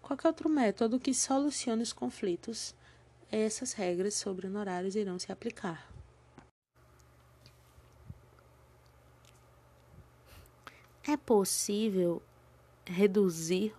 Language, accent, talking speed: Portuguese, Brazilian, 75 wpm